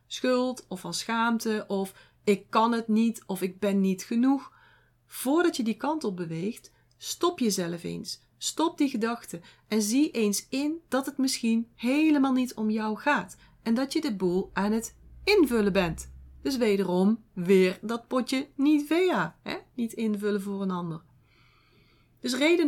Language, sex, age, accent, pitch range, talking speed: Dutch, female, 30-49, Dutch, 195-255 Hz, 160 wpm